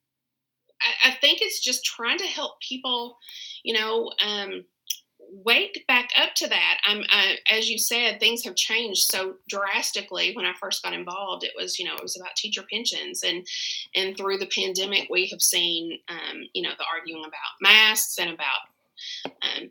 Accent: American